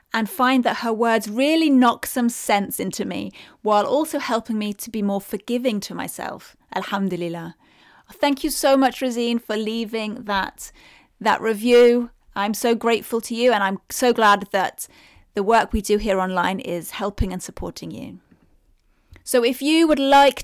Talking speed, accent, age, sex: 170 wpm, British, 30-49, female